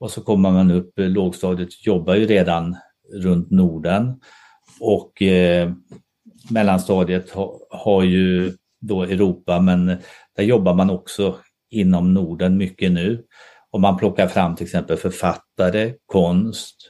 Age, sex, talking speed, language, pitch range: 50-69, male, 130 wpm, Swedish, 90-100 Hz